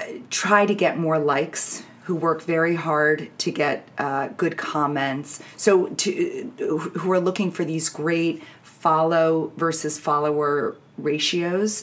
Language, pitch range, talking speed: English, 150-175 Hz, 130 wpm